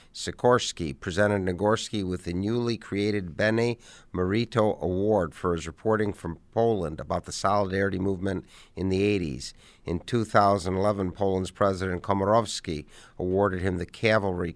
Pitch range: 90-105 Hz